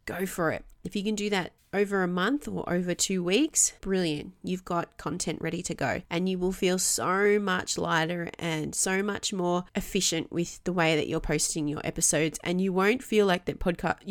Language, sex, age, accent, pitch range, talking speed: English, female, 30-49, Australian, 170-205 Hz, 210 wpm